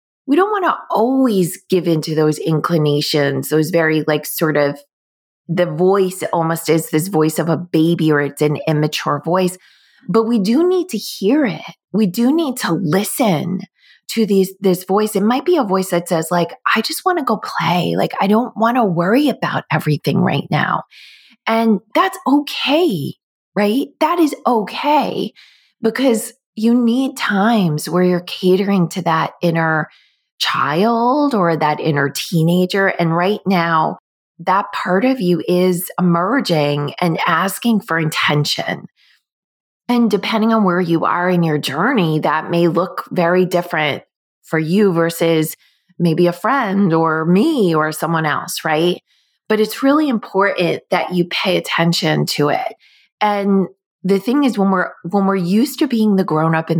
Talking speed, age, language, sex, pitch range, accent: 160 wpm, 30-49, English, female, 165-225 Hz, American